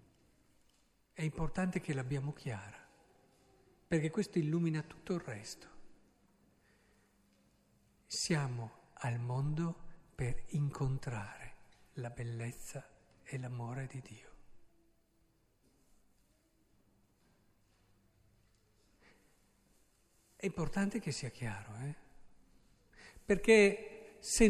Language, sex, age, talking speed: Italian, male, 50-69, 75 wpm